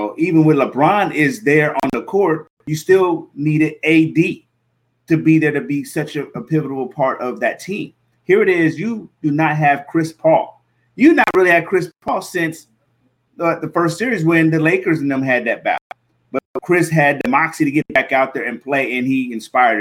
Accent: American